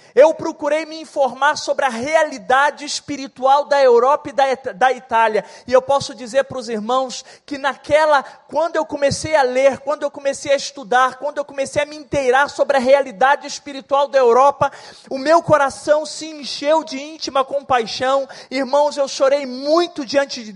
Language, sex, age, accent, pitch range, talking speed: Portuguese, male, 20-39, Brazilian, 265-295 Hz, 170 wpm